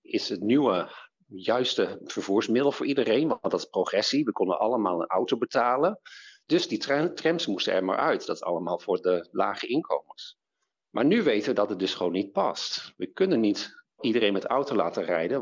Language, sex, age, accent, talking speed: Dutch, male, 50-69, Dutch, 190 wpm